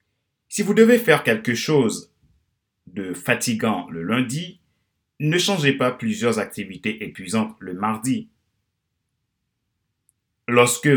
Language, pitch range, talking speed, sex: French, 95-140 Hz, 105 wpm, male